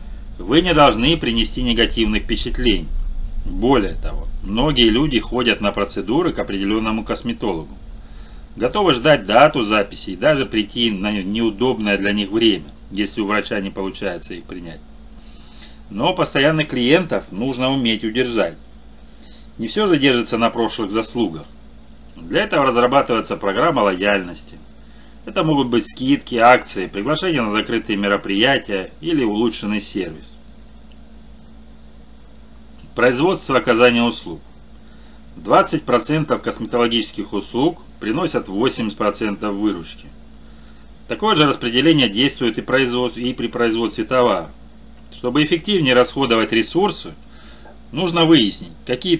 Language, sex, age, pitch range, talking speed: Russian, male, 30-49, 100-125 Hz, 105 wpm